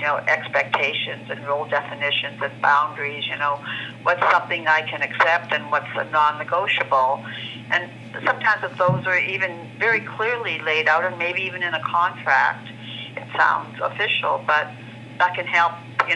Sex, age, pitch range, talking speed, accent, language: female, 60-79, 120-155 Hz, 150 wpm, American, English